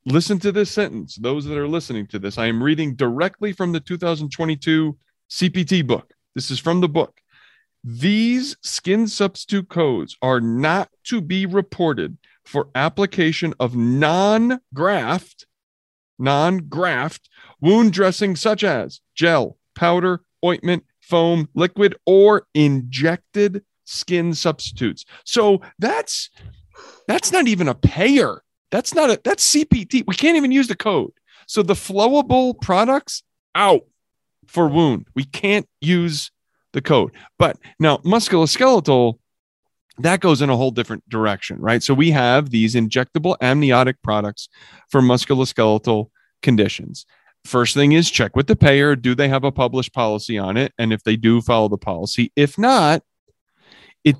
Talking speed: 140 wpm